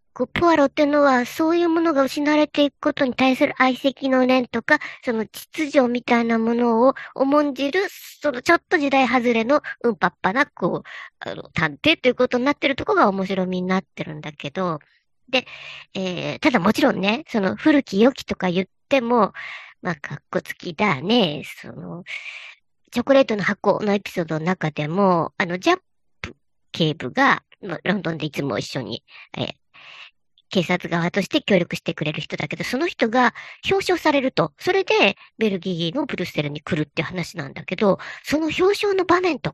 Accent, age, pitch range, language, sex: native, 40-59, 190-300 Hz, Japanese, male